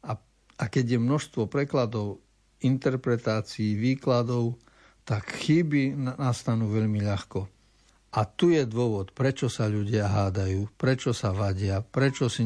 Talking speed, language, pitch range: 120 wpm, Slovak, 105-130 Hz